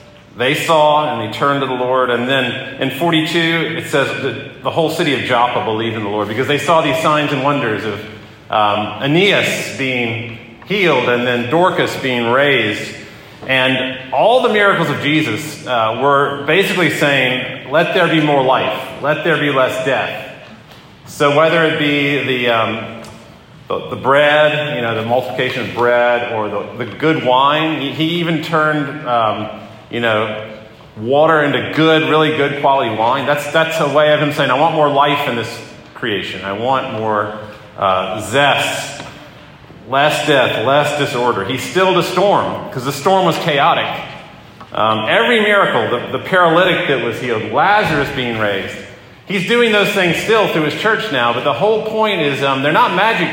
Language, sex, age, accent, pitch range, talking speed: English, male, 40-59, American, 120-160 Hz, 175 wpm